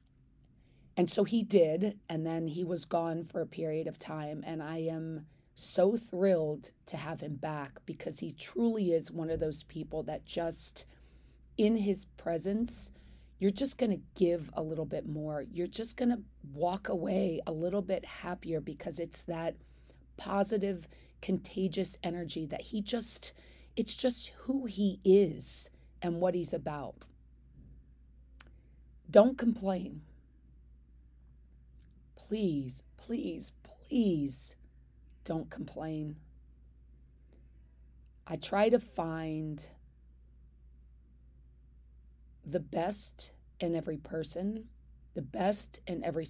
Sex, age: female, 30-49